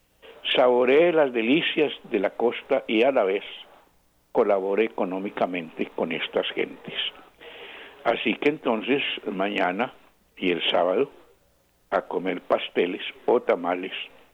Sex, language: male, Spanish